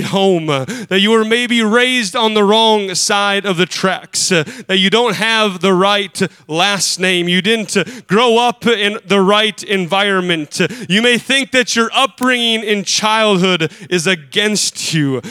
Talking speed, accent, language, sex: 155 wpm, American, English, male